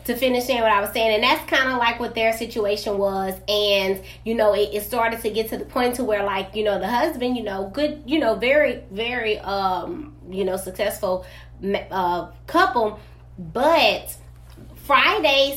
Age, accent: 20-39, American